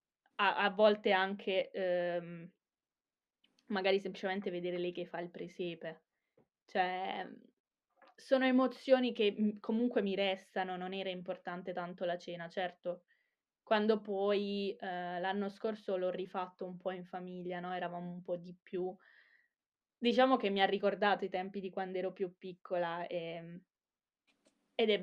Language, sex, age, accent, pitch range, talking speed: Italian, female, 20-39, native, 175-200 Hz, 140 wpm